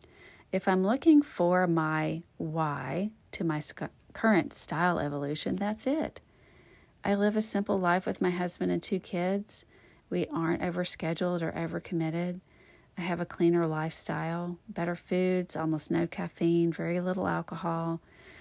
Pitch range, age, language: 160-205 Hz, 40-59, English